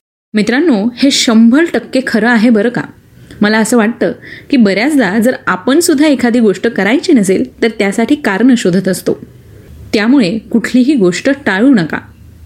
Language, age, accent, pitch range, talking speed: Marathi, 30-49, native, 205-280 Hz, 135 wpm